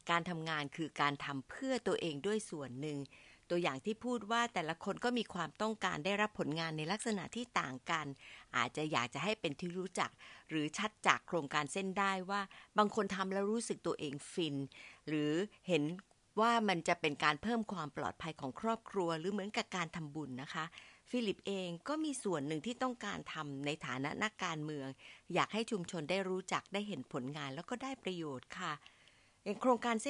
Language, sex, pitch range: Thai, female, 155-220 Hz